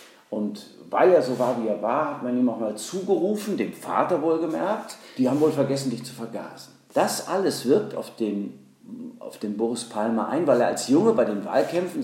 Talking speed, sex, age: 210 wpm, male, 50-69